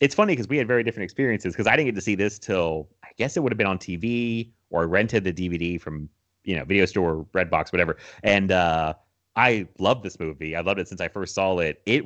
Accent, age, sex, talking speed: American, 30-49, male, 255 wpm